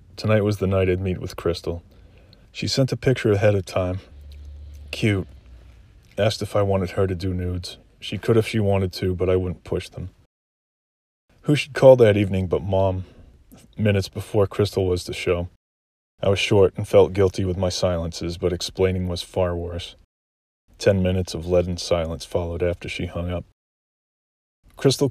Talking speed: 175 wpm